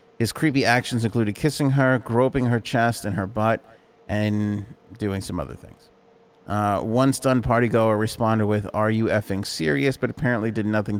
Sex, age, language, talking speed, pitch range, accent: male, 30-49, English, 170 wpm, 105-125 Hz, American